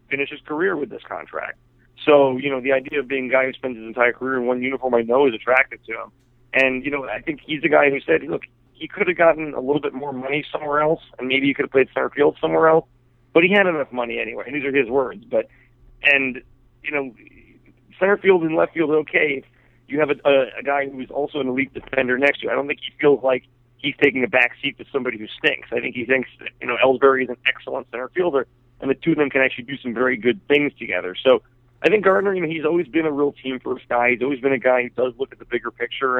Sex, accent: male, American